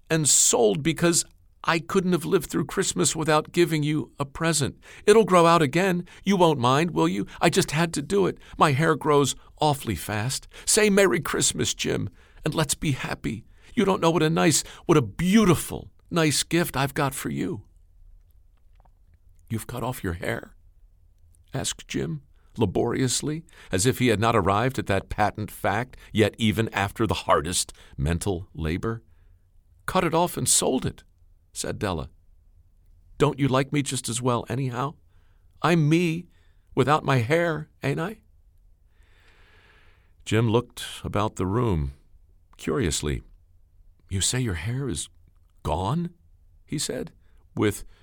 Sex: male